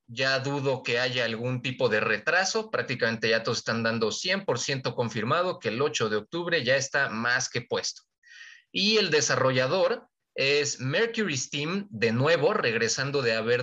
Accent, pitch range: Mexican, 120-175 Hz